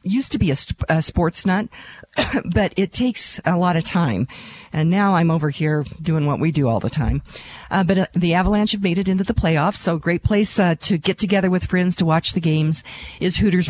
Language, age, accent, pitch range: English, 50-69, American, 145-185 Hz